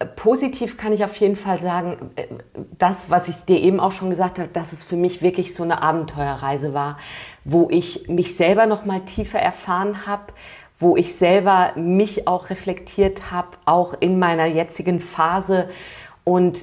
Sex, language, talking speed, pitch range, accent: female, German, 170 wpm, 170-195 Hz, German